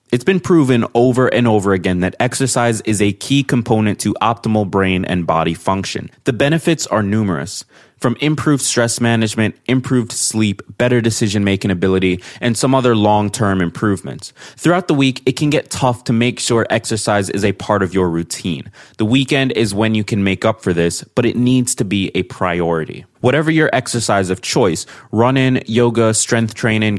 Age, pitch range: 20-39, 100-125 Hz